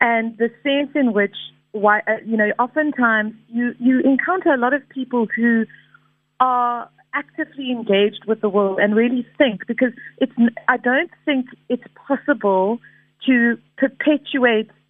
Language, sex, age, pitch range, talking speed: English, female, 30-49, 220-265 Hz, 135 wpm